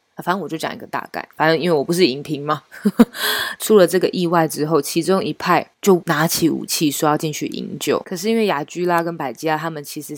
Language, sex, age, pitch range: Chinese, female, 20-39, 155-205 Hz